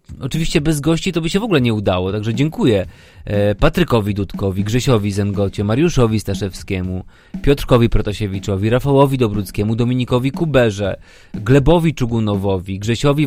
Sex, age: male, 30-49